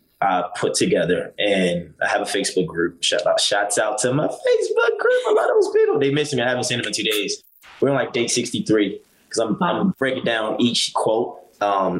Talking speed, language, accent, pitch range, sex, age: 200 wpm, English, American, 100-145 Hz, male, 20-39